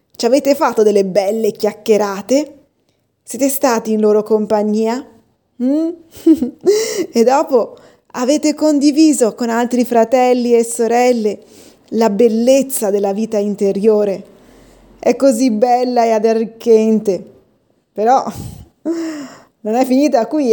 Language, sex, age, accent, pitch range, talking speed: Italian, female, 20-39, native, 220-265 Hz, 105 wpm